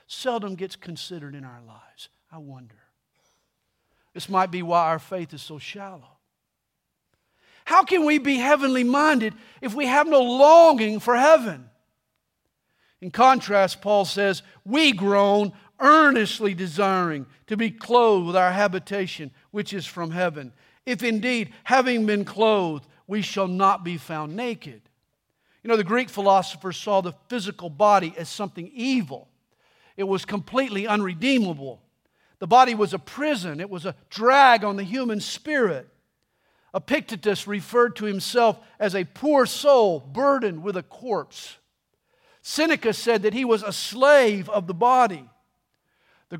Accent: American